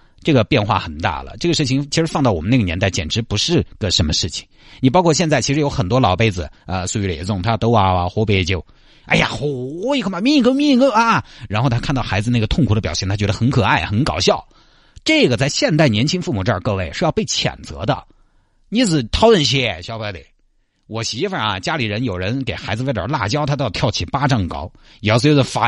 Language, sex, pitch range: Chinese, male, 95-140 Hz